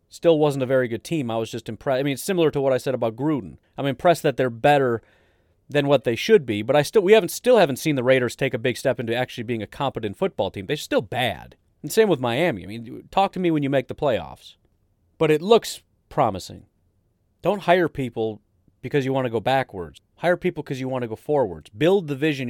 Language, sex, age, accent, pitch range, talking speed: English, male, 30-49, American, 120-165 Hz, 245 wpm